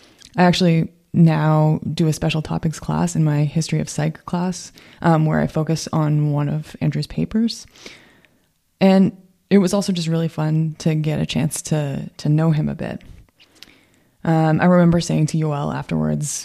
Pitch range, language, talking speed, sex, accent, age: 155-175 Hz, English, 170 wpm, female, American, 20-39